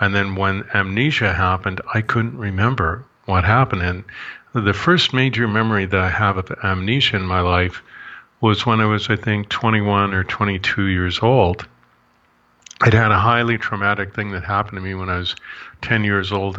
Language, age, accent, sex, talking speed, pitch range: English, 50-69, American, male, 180 wpm, 95-115 Hz